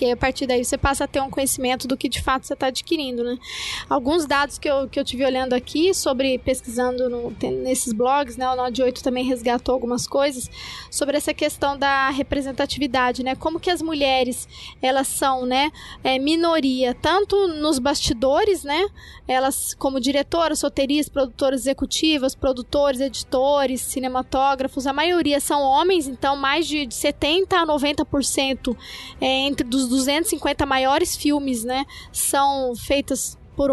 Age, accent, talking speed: 20-39, Brazilian, 155 wpm